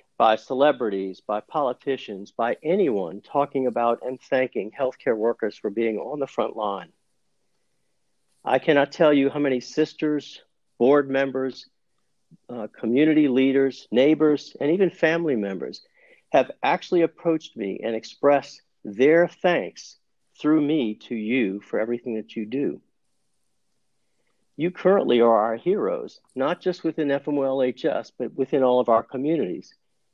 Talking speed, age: 135 wpm, 50-69